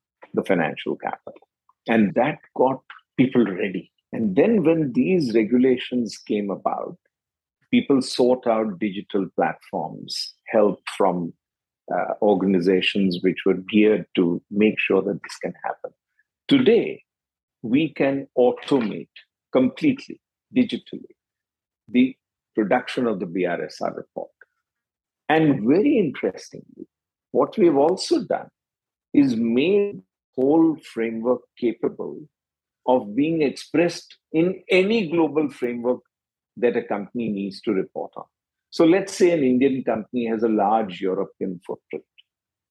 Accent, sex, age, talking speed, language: Indian, male, 50-69, 115 wpm, English